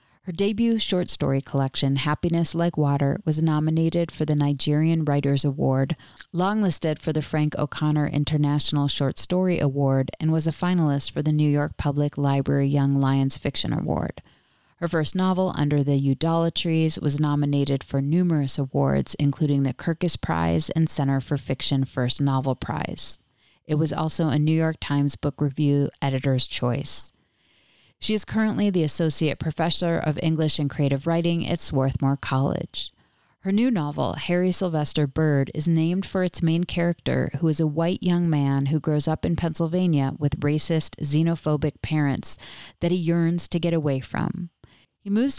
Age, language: 30-49, English